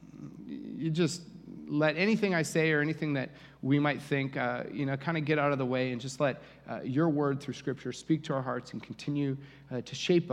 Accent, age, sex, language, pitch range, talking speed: American, 30-49, male, English, 145-175 Hz, 225 wpm